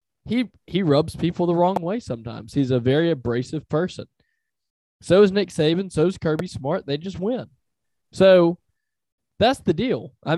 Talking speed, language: 170 wpm, English